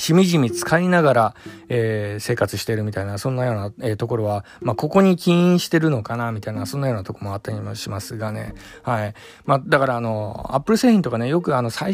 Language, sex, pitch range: Japanese, male, 110-160 Hz